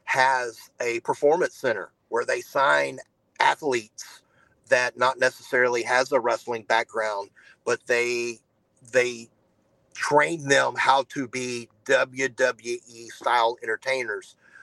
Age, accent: 40-59, American